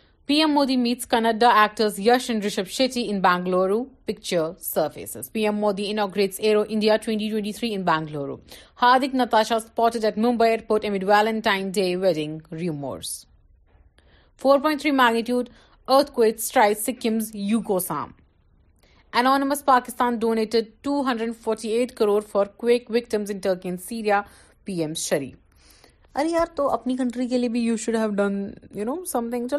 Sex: female